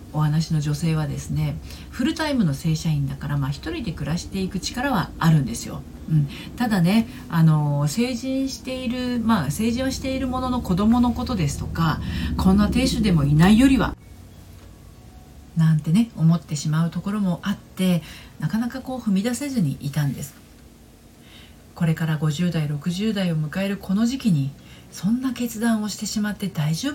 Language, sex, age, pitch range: Japanese, female, 40-59, 150-215 Hz